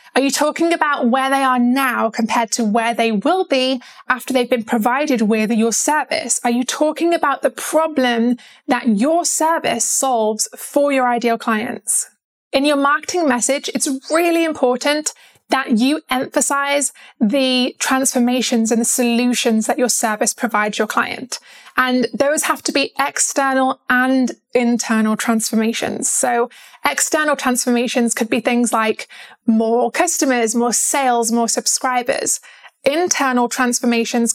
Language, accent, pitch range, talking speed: English, British, 235-280 Hz, 140 wpm